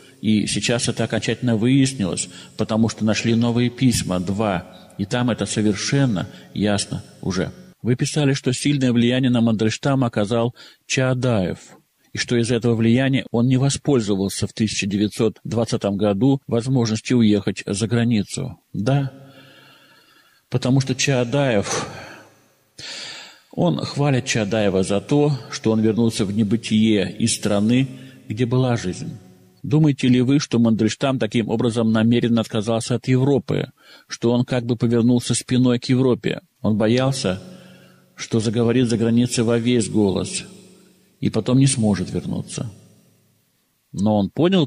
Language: Russian